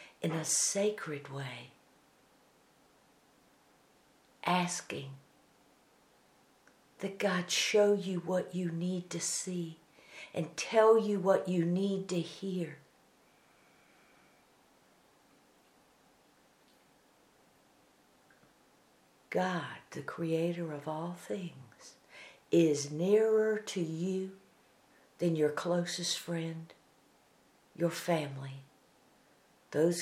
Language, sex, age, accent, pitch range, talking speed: English, female, 60-79, American, 155-185 Hz, 80 wpm